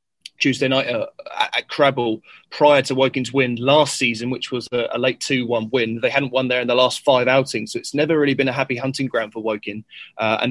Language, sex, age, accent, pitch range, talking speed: English, male, 20-39, British, 120-135 Hz, 215 wpm